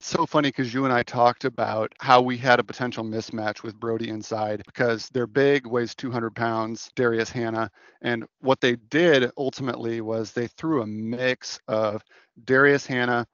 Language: English